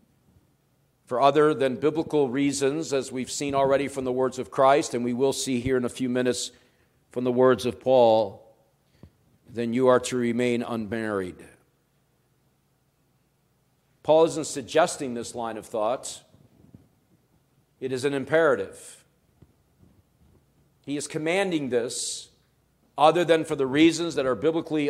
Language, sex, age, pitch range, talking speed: English, male, 50-69, 125-155 Hz, 135 wpm